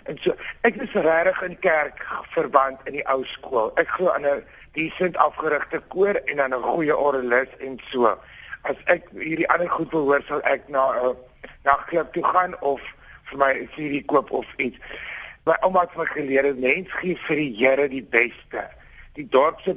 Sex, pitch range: male, 140-170 Hz